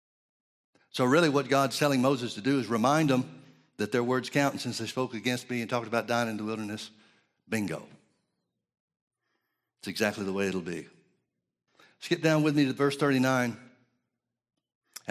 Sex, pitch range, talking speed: male, 115-150 Hz, 165 wpm